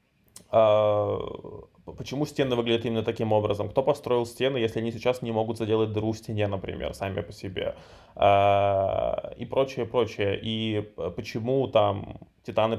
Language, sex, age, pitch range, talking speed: Russian, male, 20-39, 110-135 Hz, 135 wpm